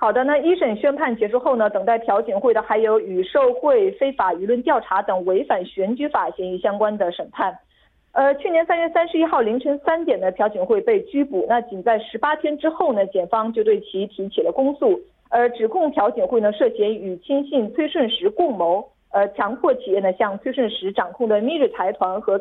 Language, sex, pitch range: Korean, female, 205-300 Hz